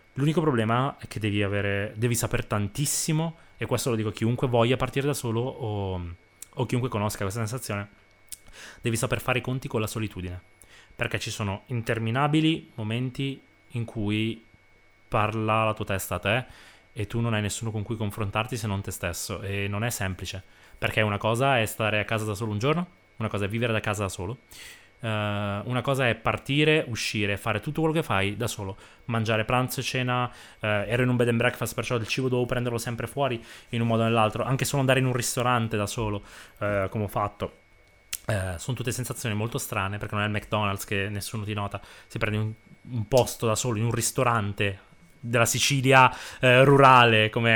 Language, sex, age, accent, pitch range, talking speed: Italian, male, 20-39, native, 105-125 Hz, 200 wpm